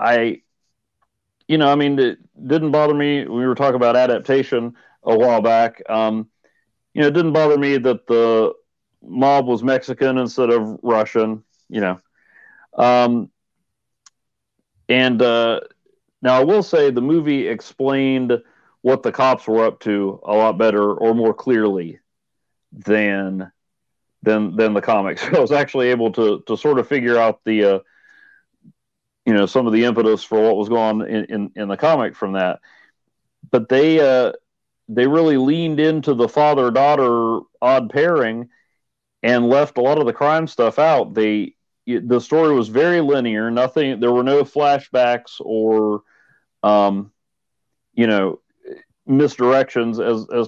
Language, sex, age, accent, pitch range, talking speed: English, male, 40-59, American, 110-140 Hz, 155 wpm